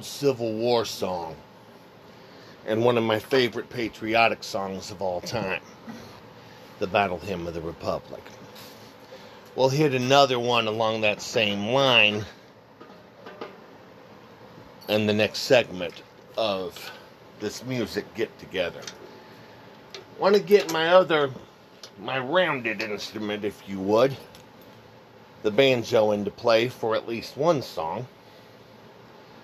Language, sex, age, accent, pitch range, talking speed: English, male, 40-59, American, 105-135 Hz, 115 wpm